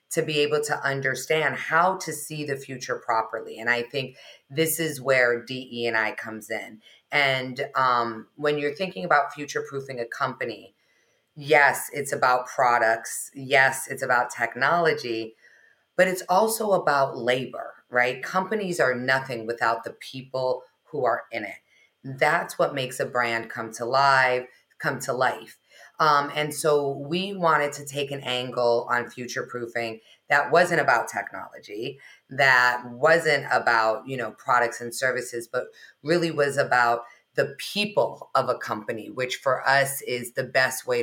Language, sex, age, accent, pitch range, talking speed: English, female, 30-49, American, 120-150 Hz, 155 wpm